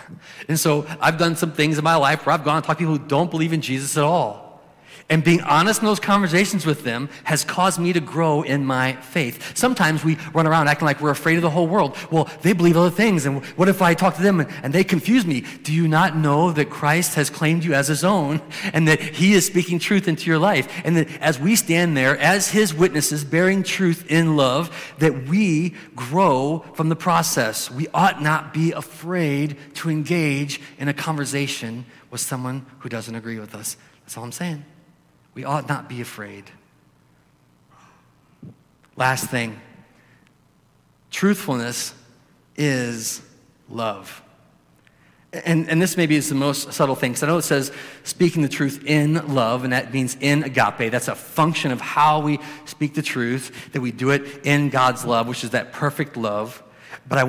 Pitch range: 135-170 Hz